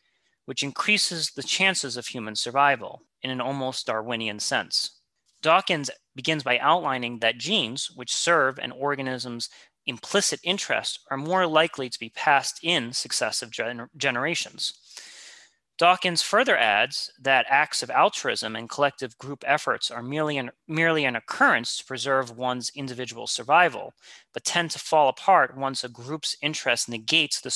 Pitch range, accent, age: 125-160 Hz, American, 30-49